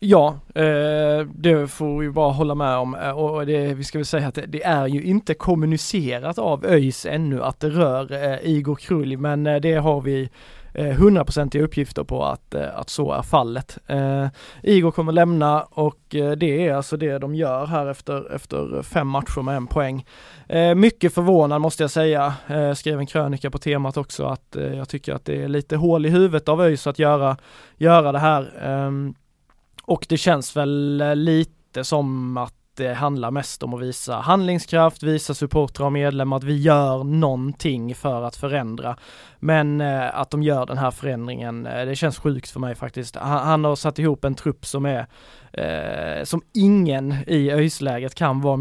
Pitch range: 135-155 Hz